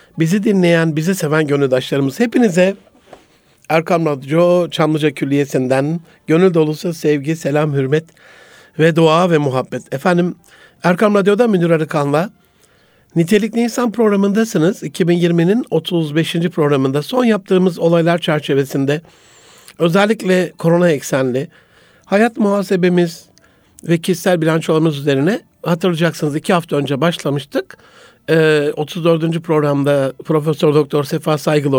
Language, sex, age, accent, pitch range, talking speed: Turkish, male, 60-79, native, 150-185 Hz, 105 wpm